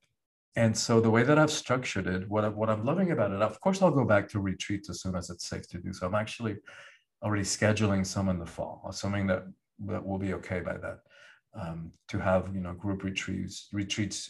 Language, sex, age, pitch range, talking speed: English, male, 40-59, 100-125 Hz, 225 wpm